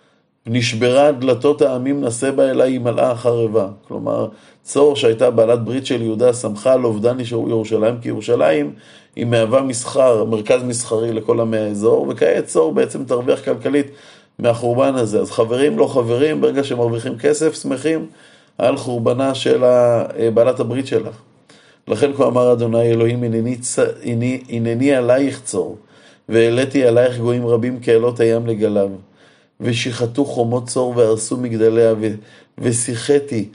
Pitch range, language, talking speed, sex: 115-130 Hz, Hebrew, 130 wpm, male